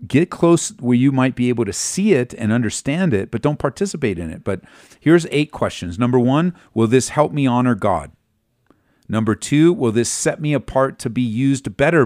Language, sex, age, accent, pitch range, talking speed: English, male, 40-59, American, 100-140 Hz, 205 wpm